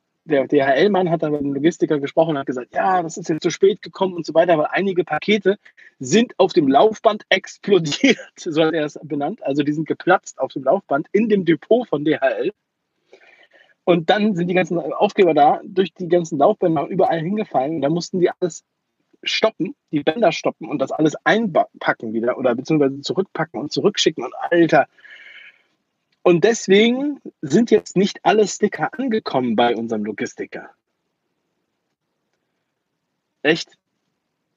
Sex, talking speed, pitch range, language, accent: male, 160 wpm, 150-205 Hz, German, German